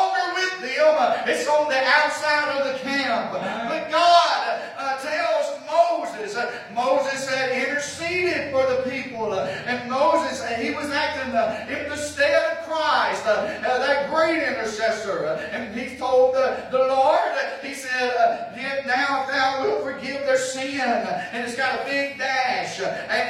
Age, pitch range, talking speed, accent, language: 20-39, 255-300 Hz, 155 wpm, American, English